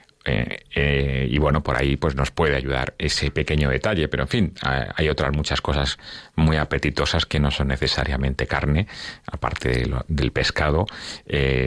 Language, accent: Spanish, Spanish